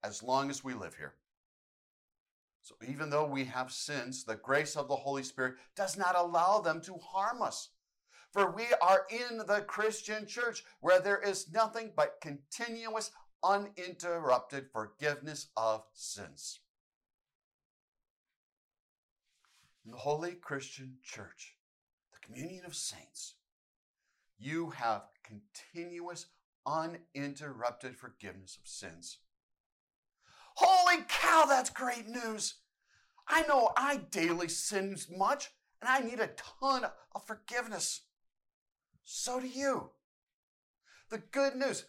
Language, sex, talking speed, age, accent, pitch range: English, male, 115 wpm, 60-79, American, 140-220 Hz